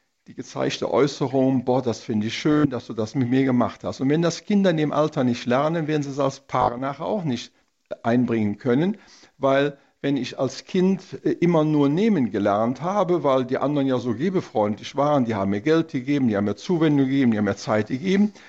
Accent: German